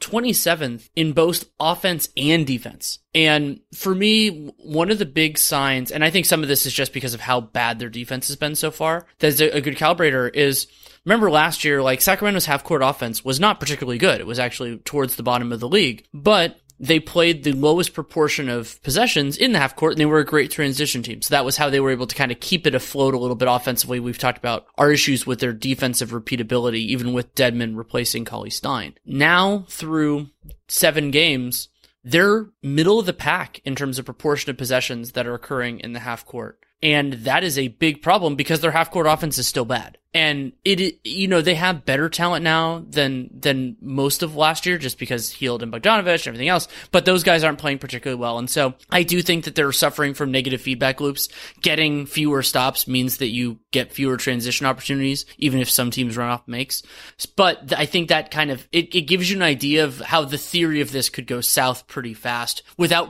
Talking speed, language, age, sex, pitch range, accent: 215 wpm, English, 20-39, male, 125-160 Hz, American